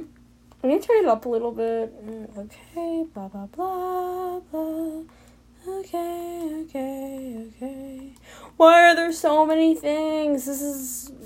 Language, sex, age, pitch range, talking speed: English, female, 10-29, 215-320 Hz, 130 wpm